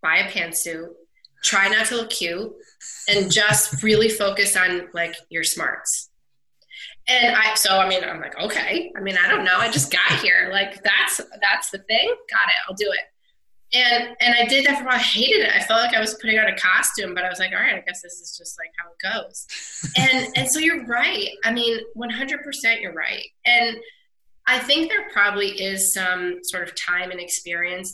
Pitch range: 175-240 Hz